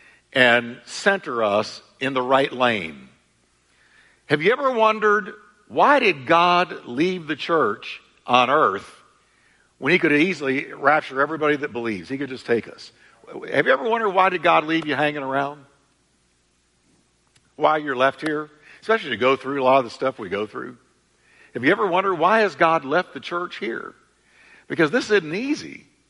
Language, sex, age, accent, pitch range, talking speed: English, male, 60-79, American, 130-210 Hz, 170 wpm